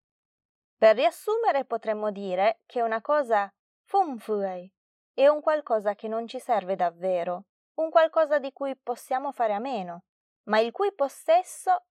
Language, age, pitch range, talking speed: Italian, 20-39, 195-280 Hz, 140 wpm